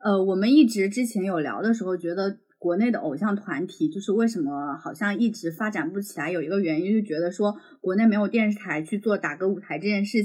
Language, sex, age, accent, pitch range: Chinese, female, 20-39, native, 180-230 Hz